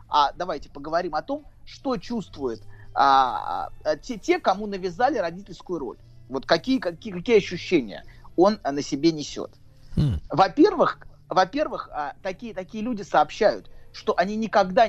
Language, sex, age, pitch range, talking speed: Russian, male, 30-49, 155-220 Hz, 120 wpm